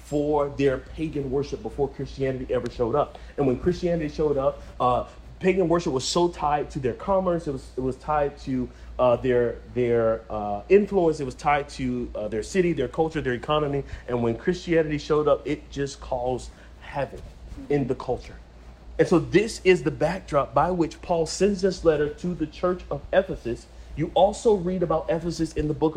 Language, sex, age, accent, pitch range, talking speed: English, male, 30-49, American, 125-180 Hz, 190 wpm